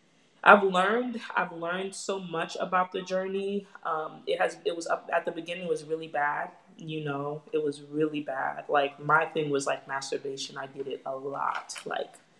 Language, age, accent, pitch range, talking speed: English, 20-39, American, 155-185 Hz, 190 wpm